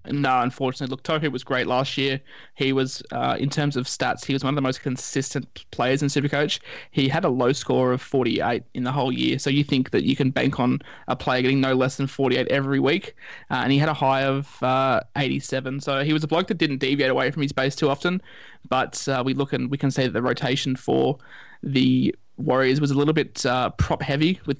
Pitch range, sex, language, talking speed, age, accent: 130-140 Hz, male, English, 240 wpm, 20-39, Australian